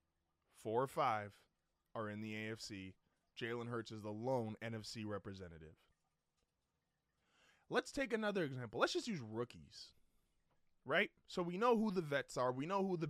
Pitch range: 120-160 Hz